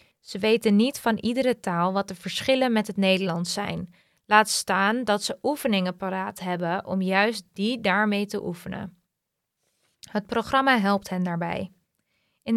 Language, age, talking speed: English, 20-39, 155 wpm